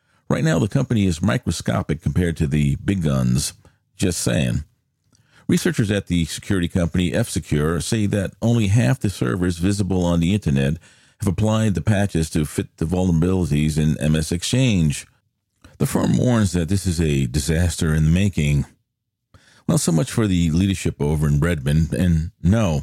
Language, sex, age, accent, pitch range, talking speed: English, male, 50-69, American, 80-105 Hz, 165 wpm